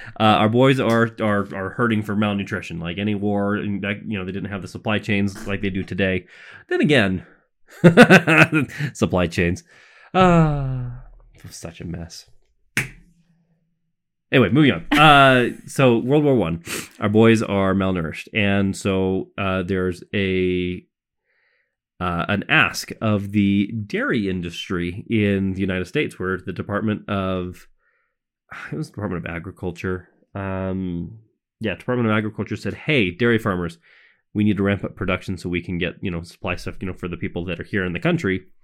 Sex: male